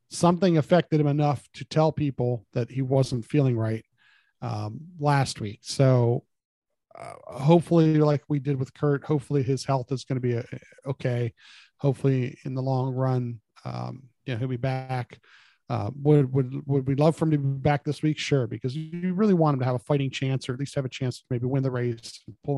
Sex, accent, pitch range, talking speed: male, American, 125-150 Hz, 210 wpm